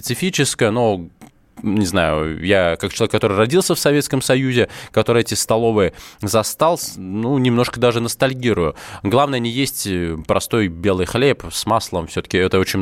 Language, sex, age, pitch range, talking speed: Russian, male, 20-39, 110-145 Hz, 145 wpm